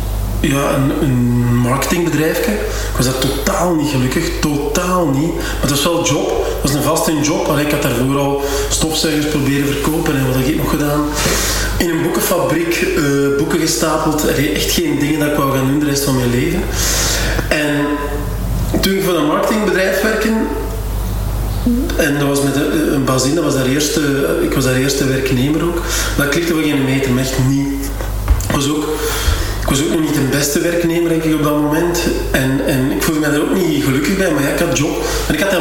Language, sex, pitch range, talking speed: Dutch, male, 130-155 Hz, 210 wpm